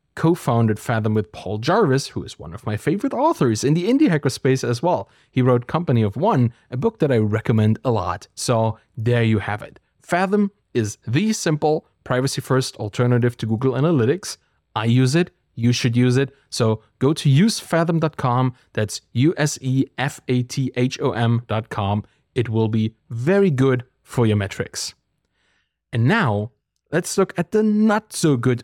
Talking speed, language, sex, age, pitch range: 170 wpm, English, male, 30-49, 115-160 Hz